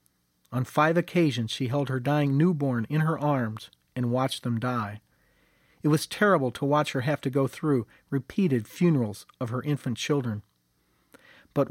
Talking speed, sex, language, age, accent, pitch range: 165 wpm, male, English, 40-59, American, 115-160 Hz